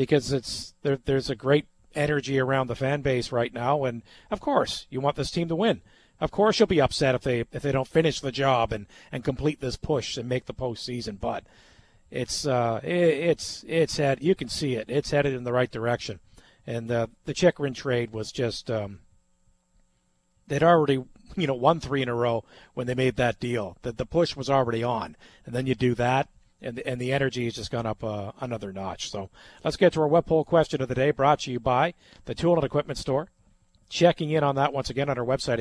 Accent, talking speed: American, 225 wpm